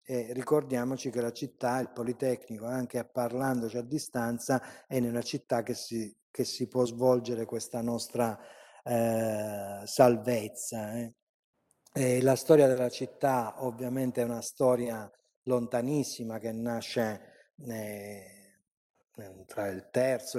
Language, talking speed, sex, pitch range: Italian, 120 wpm, male, 120-135 Hz